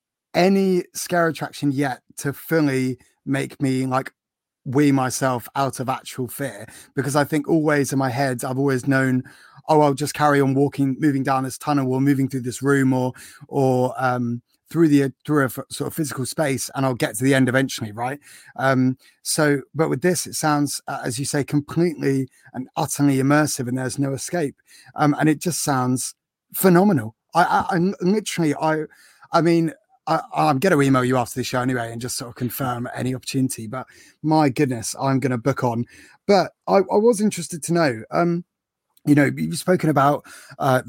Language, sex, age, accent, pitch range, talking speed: English, male, 30-49, British, 130-160 Hz, 190 wpm